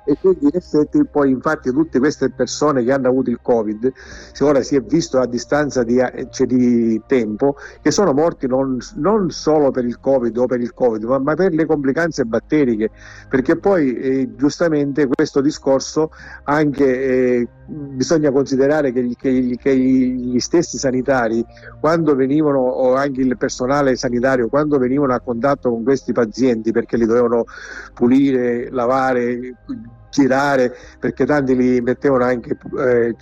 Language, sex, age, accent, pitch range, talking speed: Italian, male, 50-69, native, 125-145 Hz, 155 wpm